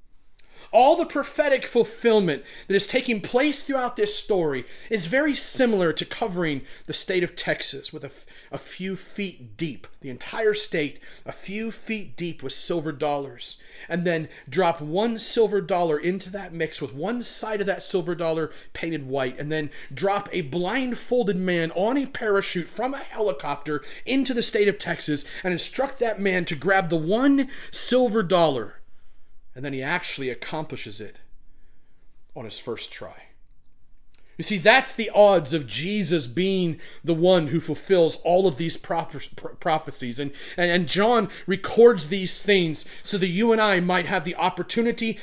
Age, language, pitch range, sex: 30-49, English, 160-220 Hz, male